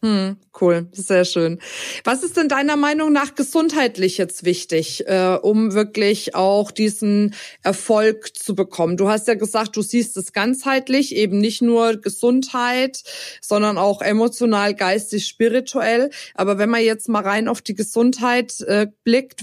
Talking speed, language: 140 wpm, German